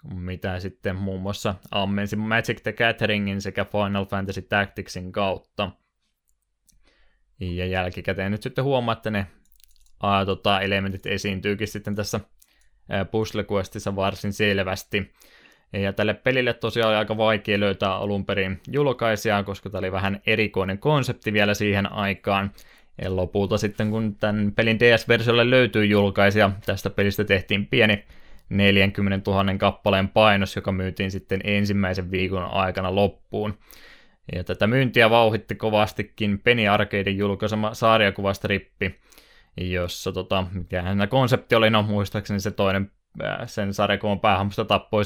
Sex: male